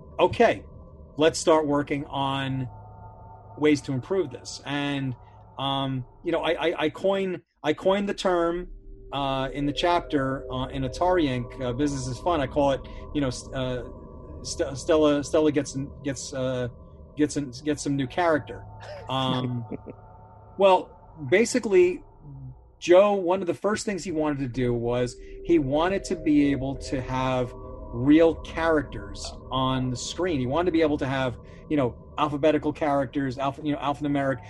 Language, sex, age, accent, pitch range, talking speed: English, male, 40-59, American, 125-170 Hz, 155 wpm